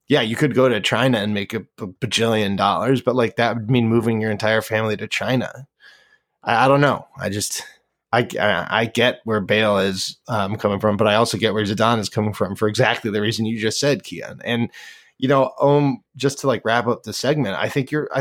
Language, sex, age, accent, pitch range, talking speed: English, male, 20-39, American, 110-145 Hz, 225 wpm